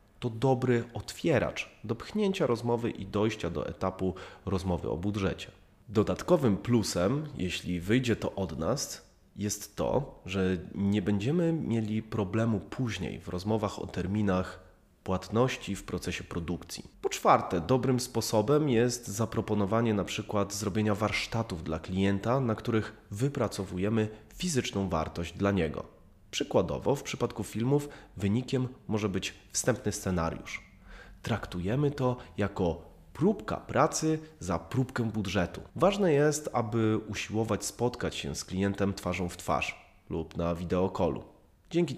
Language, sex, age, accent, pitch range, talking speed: Polish, male, 30-49, native, 95-115 Hz, 125 wpm